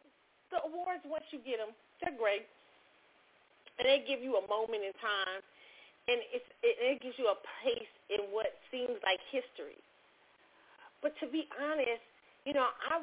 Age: 40-59